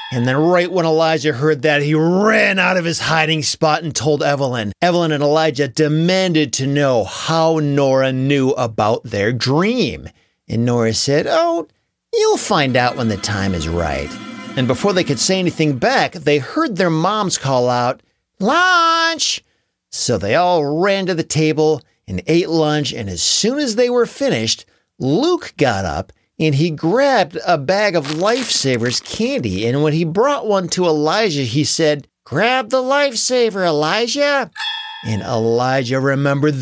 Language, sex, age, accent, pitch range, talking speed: English, male, 40-59, American, 135-200 Hz, 160 wpm